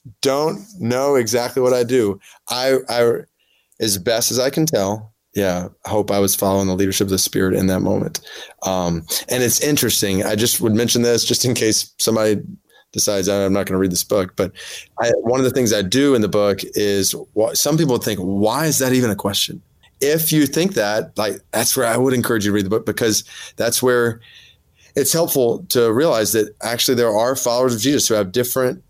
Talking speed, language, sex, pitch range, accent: 210 wpm, English, male, 100-125 Hz, American